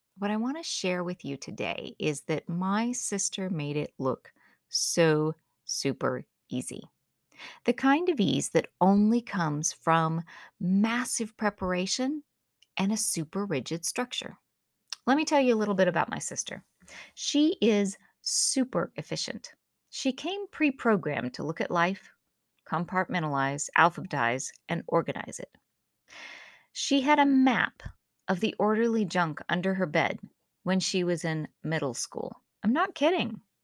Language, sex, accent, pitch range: English, female, American, 170-250 Hz